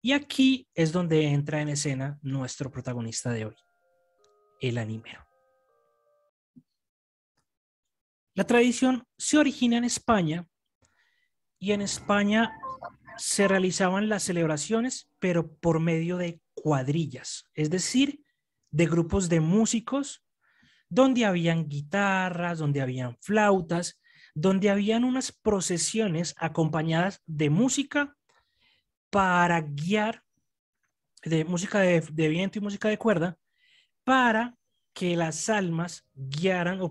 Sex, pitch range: male, 155-210 Hz